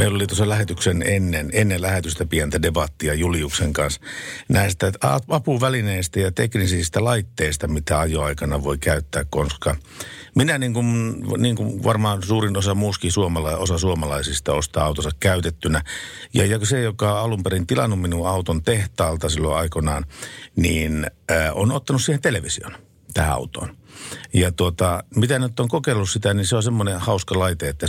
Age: 60-79